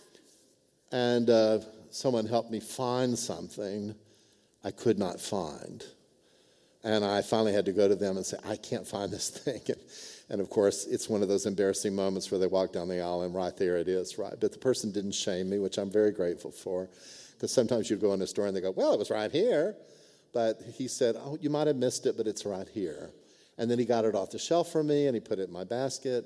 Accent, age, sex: American, 50-69, male